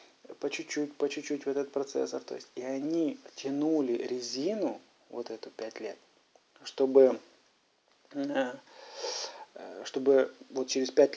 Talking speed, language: 120 wpm, Russian